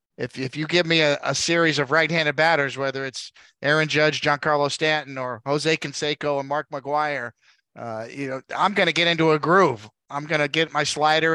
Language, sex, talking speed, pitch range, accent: English, male, 195 wpm, 135-155 Hz, American